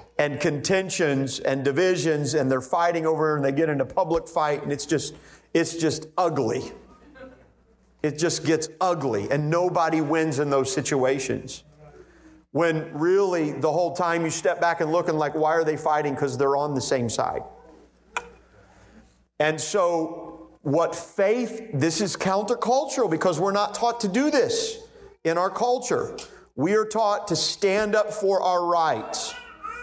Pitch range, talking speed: 155-195 Hz, 160 wpm